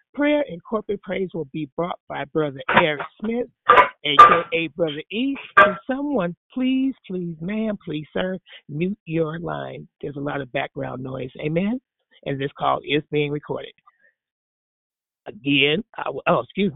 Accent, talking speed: American, 155 wpm